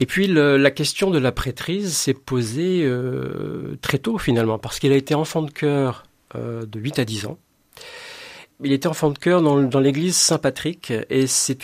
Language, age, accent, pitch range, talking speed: French, 50-69, French, 120-155 Hz, 195 wpm